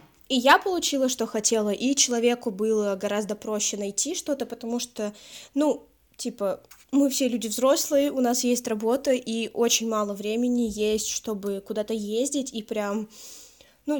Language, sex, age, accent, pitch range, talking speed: Russian, female, 10-29, native, 210-250 Hz, 150 wpm